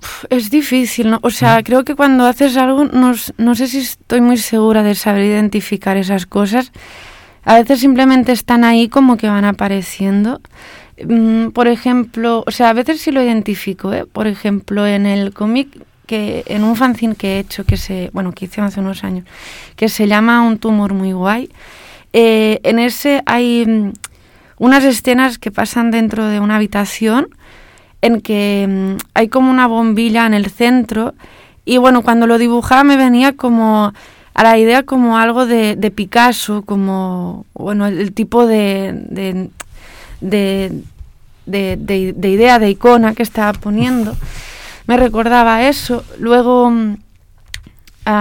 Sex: female